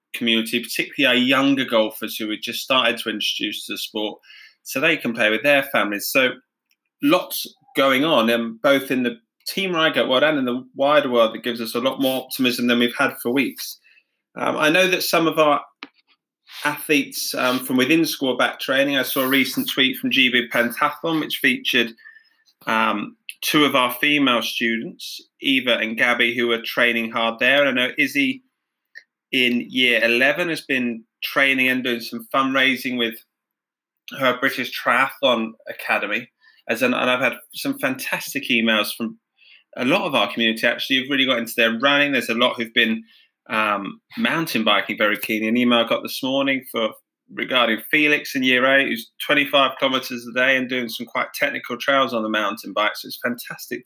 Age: 20-39